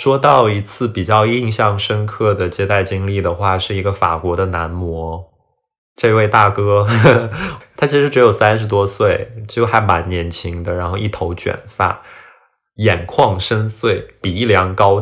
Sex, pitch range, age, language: male, 90-105 Hz, 20-39, Chinese